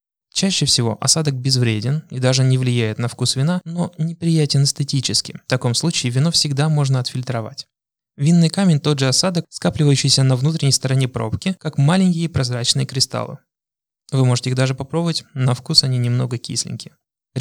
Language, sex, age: Russian, male, 20-39